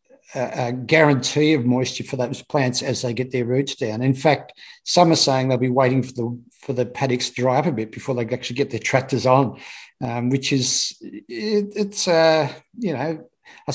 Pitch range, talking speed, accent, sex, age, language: 125-155 Hz, 200 wpm, Australian, male, 60-79, English